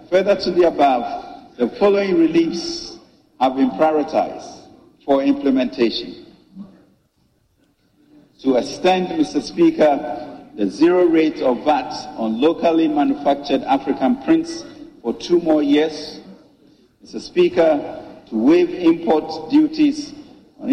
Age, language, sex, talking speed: 50-69, English, male, 105 wpm